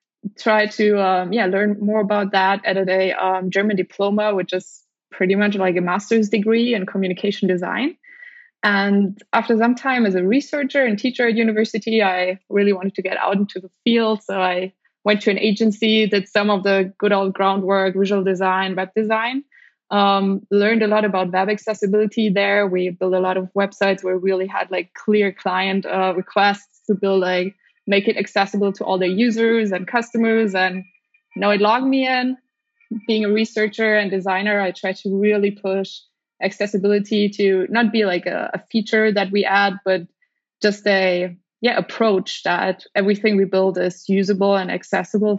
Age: 20-39